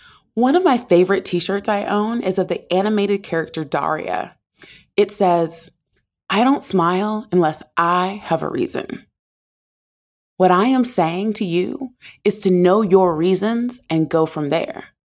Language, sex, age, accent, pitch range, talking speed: English, female, 20-39, American, 175-235 Hz, 150 wpm